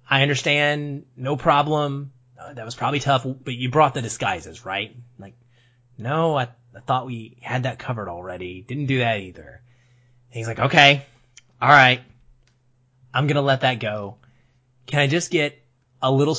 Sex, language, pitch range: male, English, 120-145 Hz